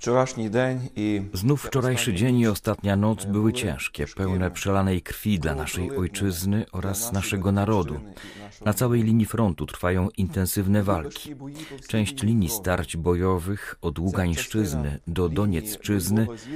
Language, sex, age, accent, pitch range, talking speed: Polish, male, 40-59, native, 95-115 Hz, 115 wpm